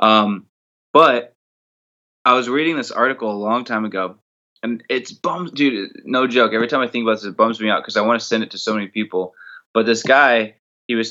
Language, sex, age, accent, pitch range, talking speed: English, male, 20-39, American, 110-130 Hz, 225 wpm